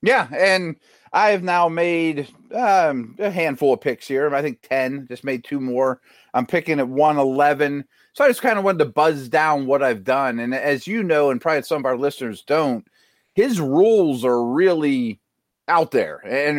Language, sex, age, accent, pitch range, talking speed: English, male, 30-49, American, 125-165 Hz, 190 wpm